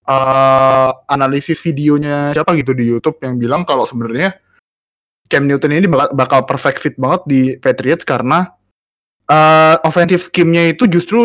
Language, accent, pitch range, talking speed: Indonesian, native, 130-165 Hz, 145 wpm